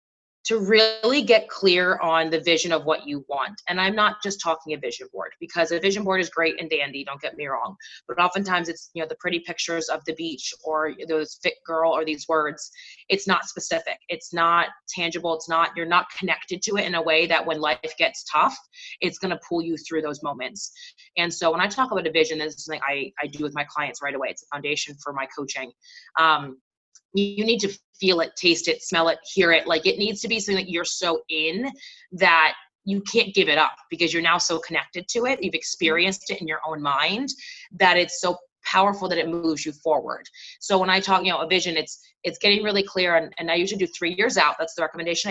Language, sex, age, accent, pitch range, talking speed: English, female, 20-39, American, 160-195 Hz, 235 wpm